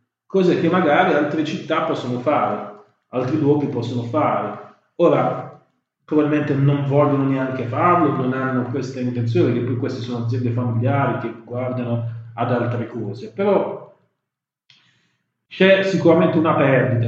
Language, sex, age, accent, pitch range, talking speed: Italian, male, 30-49, native, 120-135 Hz, 125 wpm